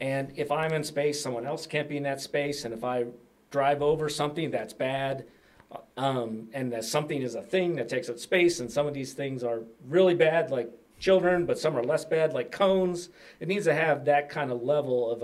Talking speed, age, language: 225 wpm, 40-59, English